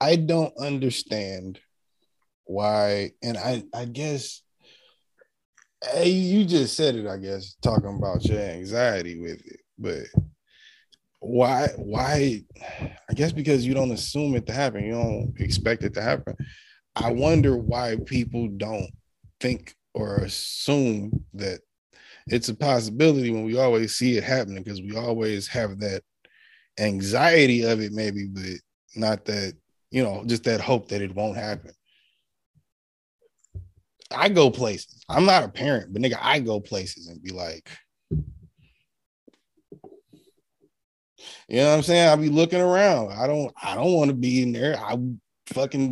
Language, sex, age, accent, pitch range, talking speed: English, male, 20-39, American, 105-140 Hz, 145 wpm